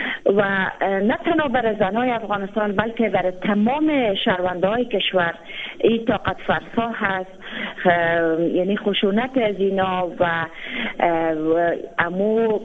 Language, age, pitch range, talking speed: Persian, 30-49, 190-235 Hz, 95 wpm